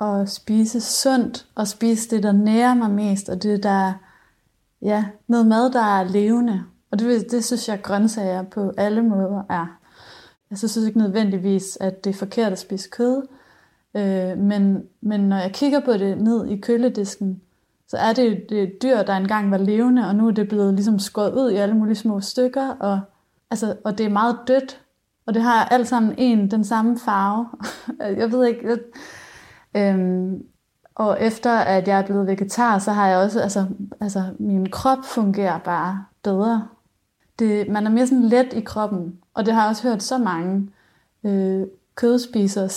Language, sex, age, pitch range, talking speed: Danish, female, 30-49, 195-230 Hz, 185 wpm